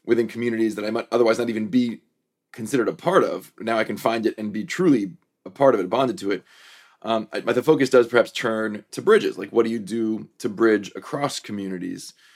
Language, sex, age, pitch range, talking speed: English, male, 30-49, 105-130 Hz, 230 wpm